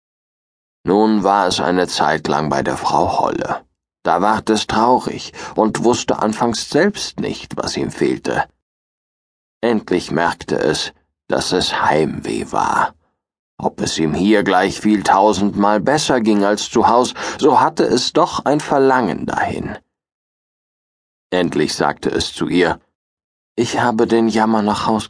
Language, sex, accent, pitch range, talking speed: German, male, German, 105-155 Hz, 140 wpm